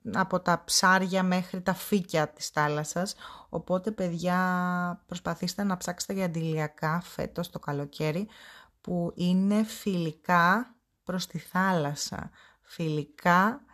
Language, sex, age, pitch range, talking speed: Greek, female, 20-39, 150-185 Hz, 110 wpm